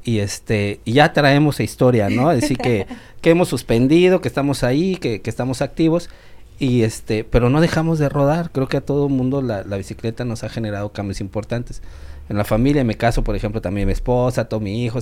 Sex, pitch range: male, 105-130 Hz